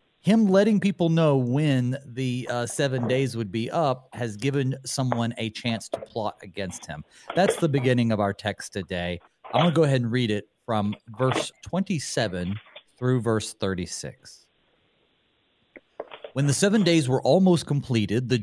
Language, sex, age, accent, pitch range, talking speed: English, male, 40-59, American, 110-150 Hz, 165 wpm